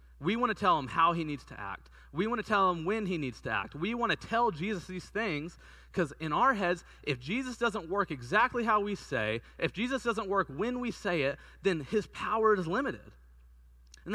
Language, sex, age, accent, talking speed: English, male, 30-49, American, 225 wpm